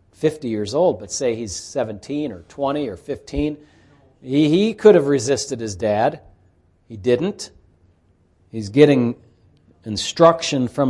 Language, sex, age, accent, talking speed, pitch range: English, male, 40-59, American, 130 wpm, 100-155 Hz